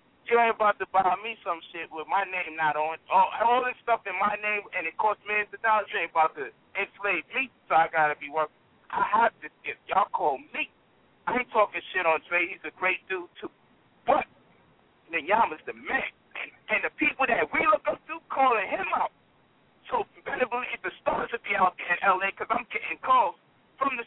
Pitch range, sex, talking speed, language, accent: 195-245 Hz, male, 220 wpm, English, American